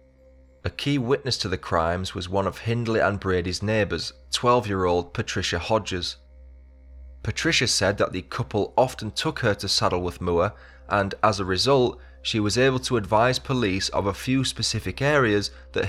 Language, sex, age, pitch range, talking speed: English, male, 20-39, 75-110 Hz, 160 wpm